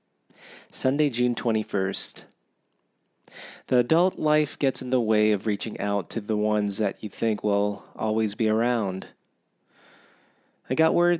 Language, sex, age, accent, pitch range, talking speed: English, male, 30-49, American, 105-130 Hz, 140 wpm